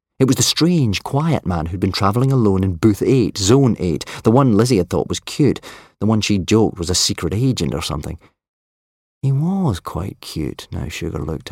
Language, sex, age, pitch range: English, male, 40-59, 85-115 Hz